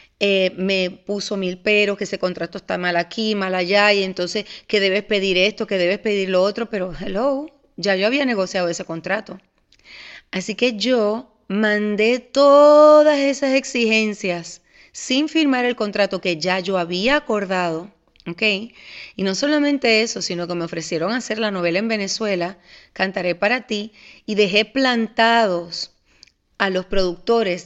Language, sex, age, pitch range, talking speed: Spanish, female, 30-49, 185-220 Hz, 155 wpm